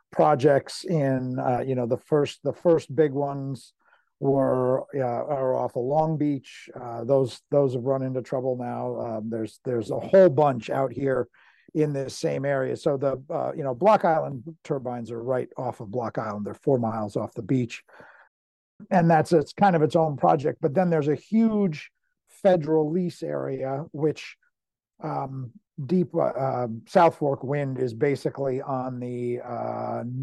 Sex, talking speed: male, 175 wpm